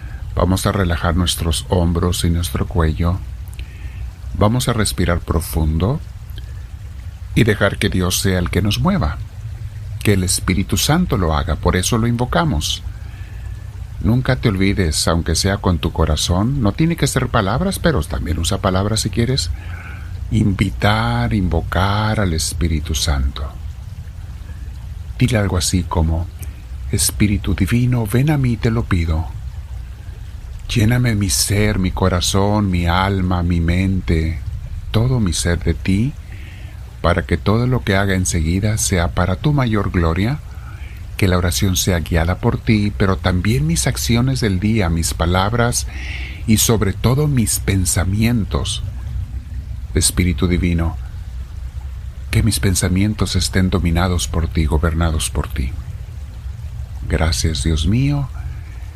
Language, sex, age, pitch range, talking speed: Spanish, male, 50-69, 85-105 Hz, 130 wpm